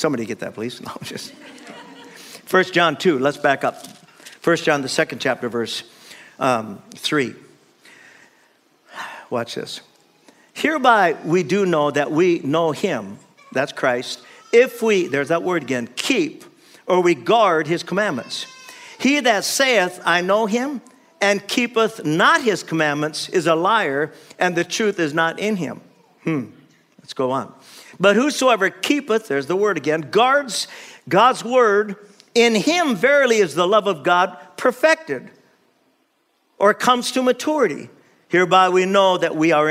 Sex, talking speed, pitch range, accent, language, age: male, 145 wpm, 175-245 Hz, American, English, 50-69